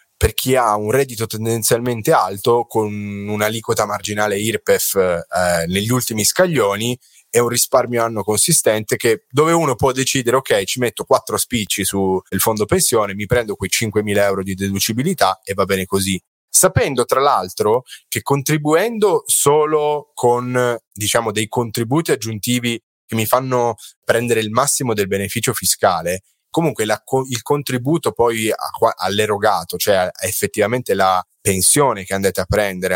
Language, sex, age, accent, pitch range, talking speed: Italian, male, 20-39, native, 100-135 Hz, 140 wpm